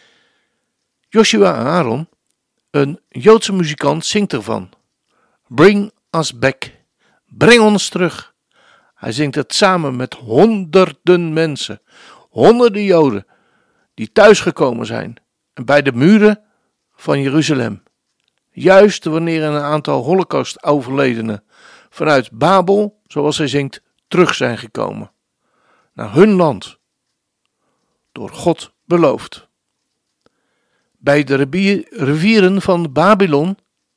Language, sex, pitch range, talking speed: Dutch, male, 145-205 Hz, 95 wpm